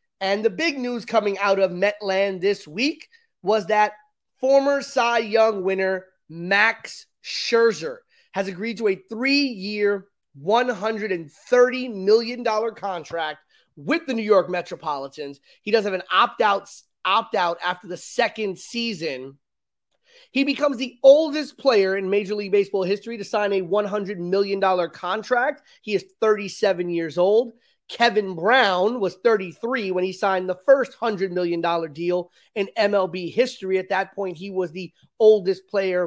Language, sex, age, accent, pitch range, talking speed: English, male, 30-49, American, 180-235 Hz, 140 wpm